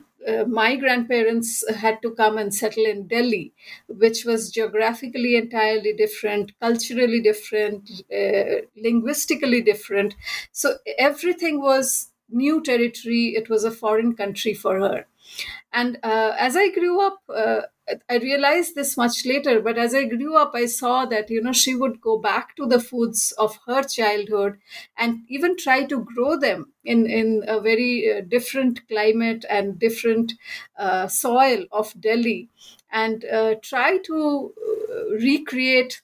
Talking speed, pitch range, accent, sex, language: 145 wpm, 220-270 Hz, Indian, female, English